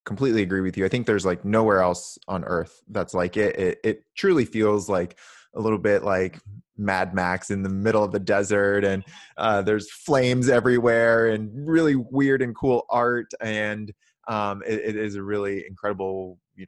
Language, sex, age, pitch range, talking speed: English, male, 20-39, 90-110 Hz, 185 wpm